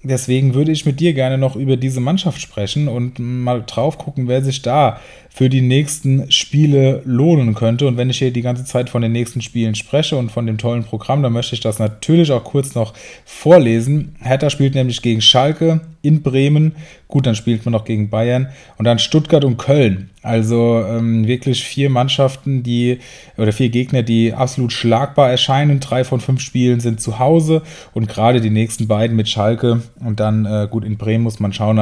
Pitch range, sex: 115-135 Hz, male